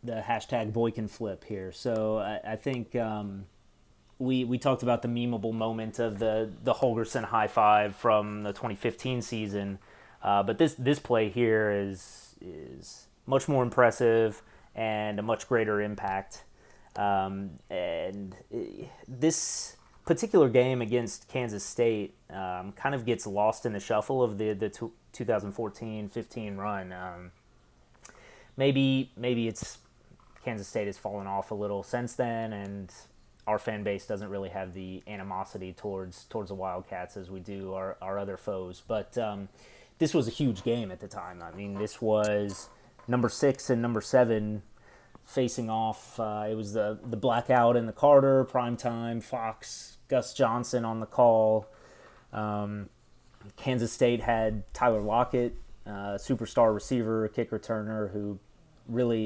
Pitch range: 100-120 Hz